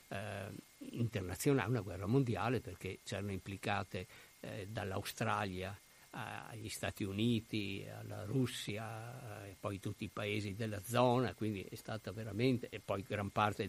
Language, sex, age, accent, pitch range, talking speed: Italian, male, 50-69, native, 100-120 Hz, 125 wpm